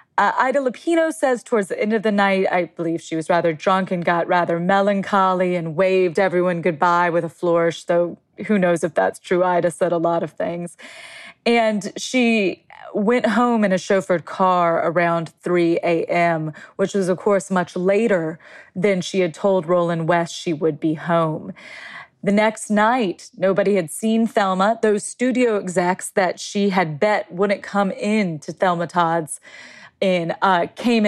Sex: female